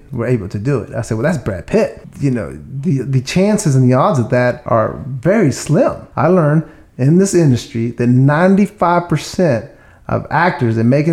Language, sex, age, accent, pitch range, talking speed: English, male, 30-49, American, 115-145 Hz, 190 wpm